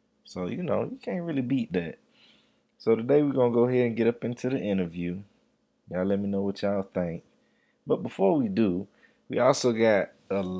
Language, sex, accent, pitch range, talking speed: English, male, American, 95-115 Hz, 205 wpm